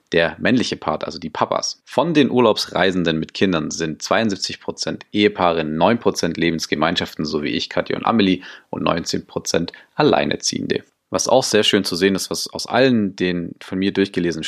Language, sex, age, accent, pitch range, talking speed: German, male, 30-49, German, 85-105 Hz, 160 wpm